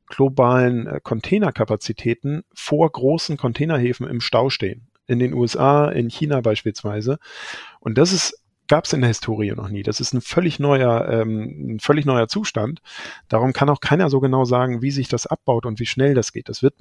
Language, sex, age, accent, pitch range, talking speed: German, male, 40-59, German, 110-130 Hz, 170 wpm